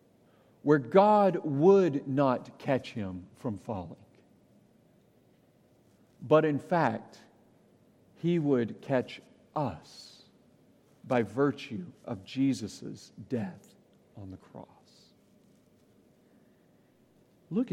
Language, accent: English, American